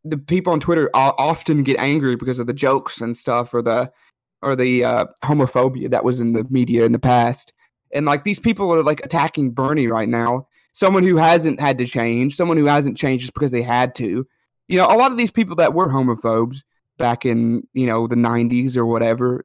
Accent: American